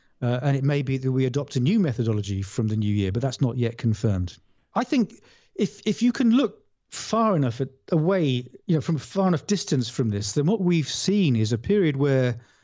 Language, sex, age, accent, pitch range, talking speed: English, male, 40-59, British, 125-160 Hz, 230 wpm